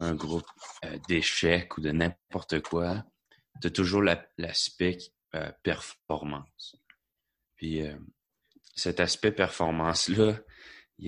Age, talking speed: 30-49, 105 wpm